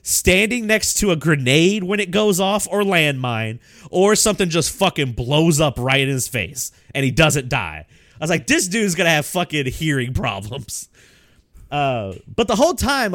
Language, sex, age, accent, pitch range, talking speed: English, male, 30-49, American, 110-175 Hz, 185 wpm